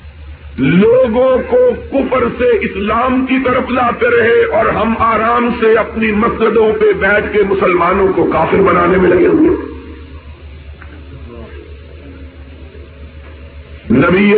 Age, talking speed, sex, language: 50-69, 110 wpm, male, Urdu